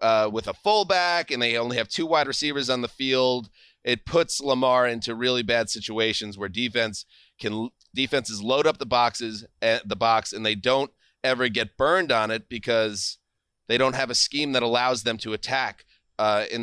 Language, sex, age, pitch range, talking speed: English, male, 30-49, 110-135 Hz, 195 wpm